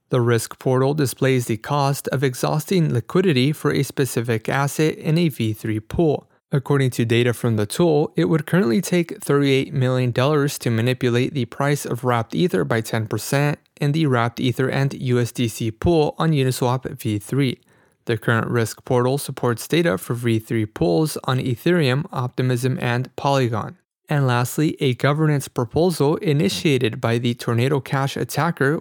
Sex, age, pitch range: male, 30-49, 120-150 Hz